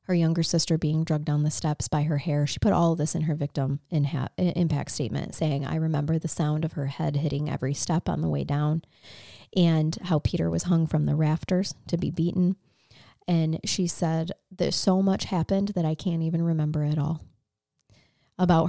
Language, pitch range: English, 150-180 Hz